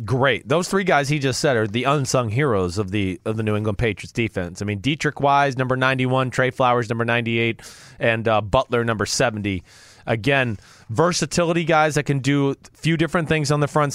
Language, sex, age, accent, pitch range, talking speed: English, male, 30-49, American, 120-165 Hz, 210 wpm